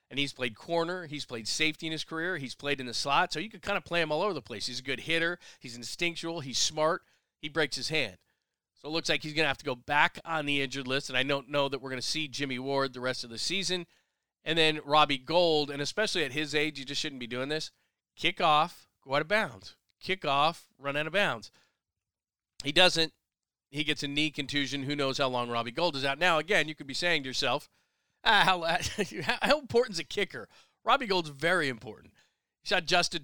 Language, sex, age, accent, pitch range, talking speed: English, male, 40-59, American, 130-160 Hz, 240 wpm